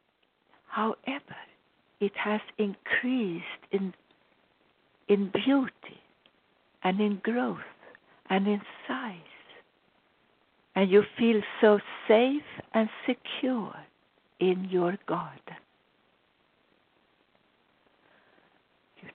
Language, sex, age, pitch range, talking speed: English, female, 60-79, 150-200 Hz, 75 wpm